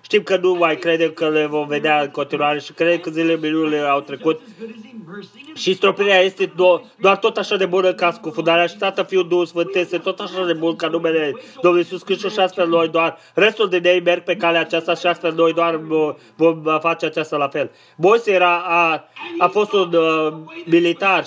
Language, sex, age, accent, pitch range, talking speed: Romanian, male, 20-39, native, 165-190 Hz, 195 wpm